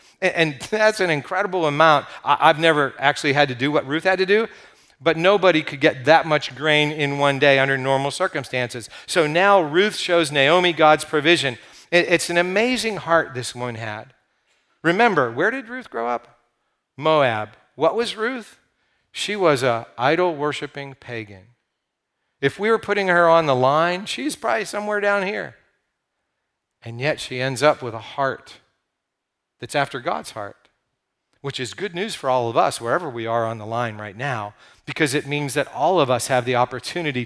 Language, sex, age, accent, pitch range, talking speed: English, male, 50-69, American, 130-175 Hz, 175 wpm